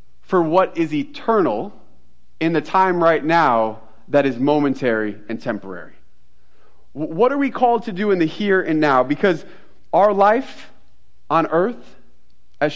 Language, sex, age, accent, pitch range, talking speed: English, male, 30-49, American, 135-190 Hz, 145 wpm